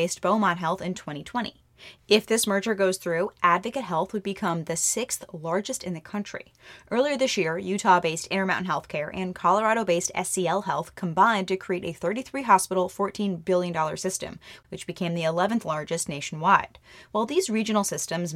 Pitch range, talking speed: 175-210 Hz, 155 wpm